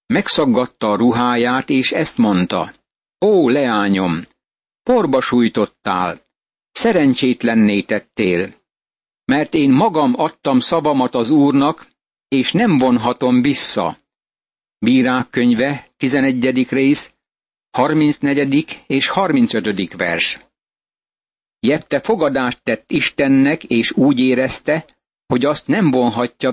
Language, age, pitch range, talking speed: Hungarian, 60-79, 125-150 Hz, 95 wpm